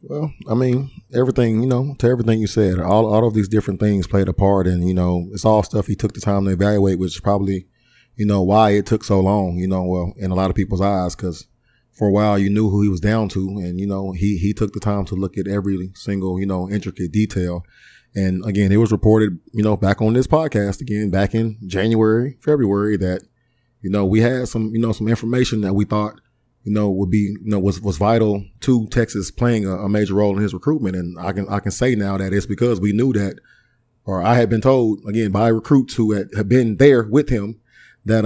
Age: 20-39